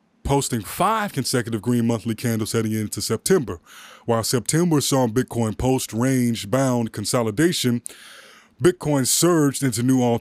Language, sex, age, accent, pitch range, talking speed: English, male, 30-49, American, 115-140 Hz, 130 wpm